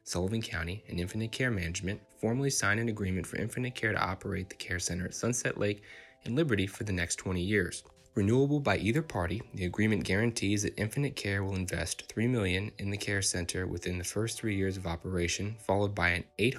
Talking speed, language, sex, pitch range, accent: 205 wpm, English, male, 85-110 Hz, American